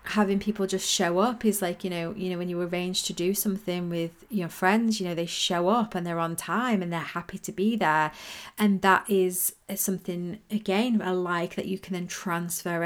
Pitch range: 175-205 Hz